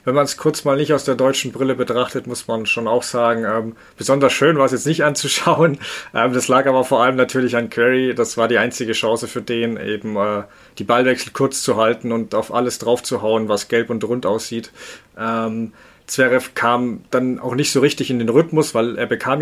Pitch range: 120-140 Hz